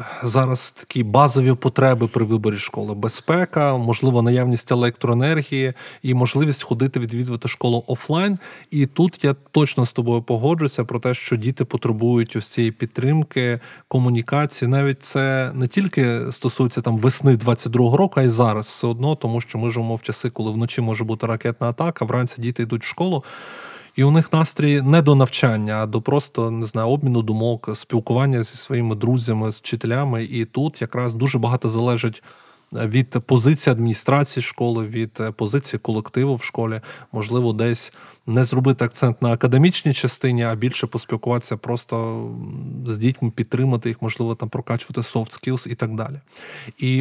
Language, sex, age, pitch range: Ukrainian, male, 20-39, 115-135 Hz